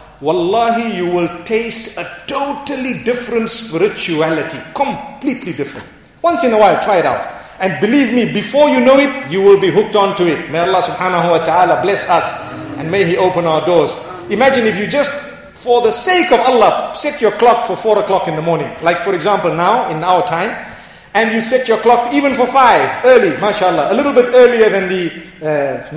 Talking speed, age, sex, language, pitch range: 200 wpm, 40-59, male, English, 170-245 Hz